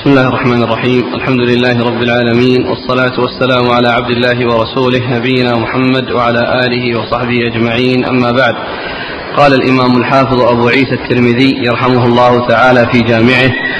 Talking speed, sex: 145 wpm, male